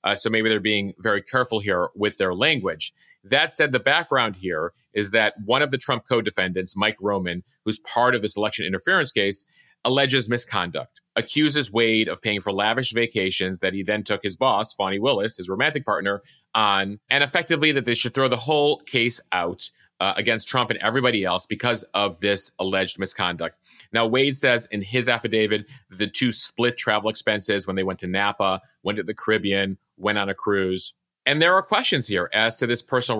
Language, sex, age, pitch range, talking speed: English, male, 30-49, 100-125 Hz, 195 wpm